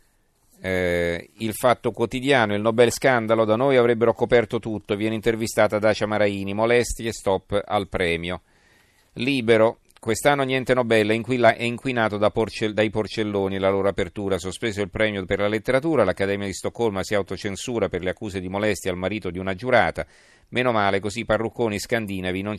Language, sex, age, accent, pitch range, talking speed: Italian, male, 40-59, native, 95-115 Hz, 160 wpm